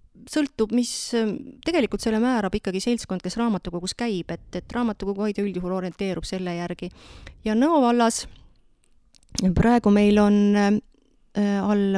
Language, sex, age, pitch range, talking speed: English, female, 30-49, 190-220 Hz, 120 wpm